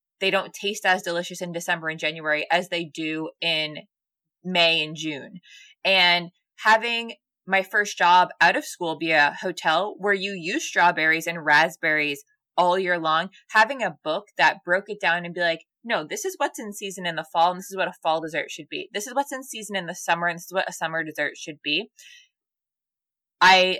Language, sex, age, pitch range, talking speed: English, female, 20-39, 170-215 Hz, 205 wpm